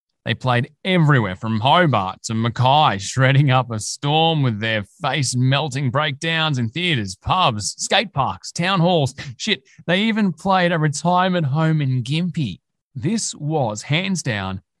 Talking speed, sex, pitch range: 140 wpm, male, 110-155 Hz